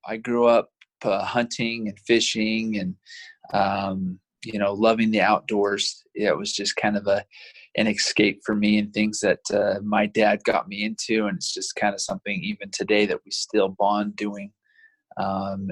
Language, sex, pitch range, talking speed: English, male, 105-120 Hz, 180 wpm